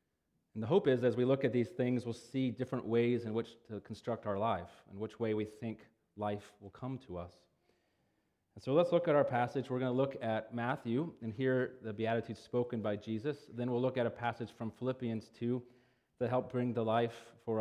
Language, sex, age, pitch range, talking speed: English, male, 30-49, 105-125 Hz, 220 wpm